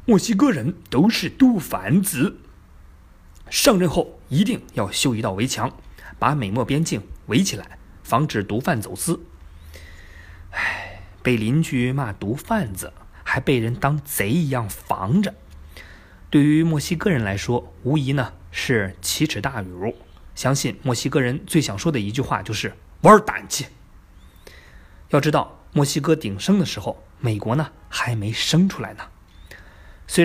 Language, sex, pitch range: Chinese, male, 95-150 Hz